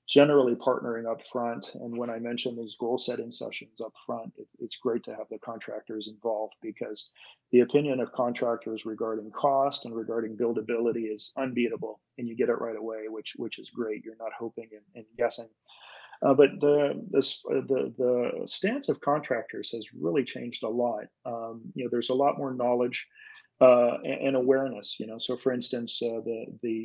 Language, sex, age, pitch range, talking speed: English, male, 40-59, 115-130 Hz, 185 wpm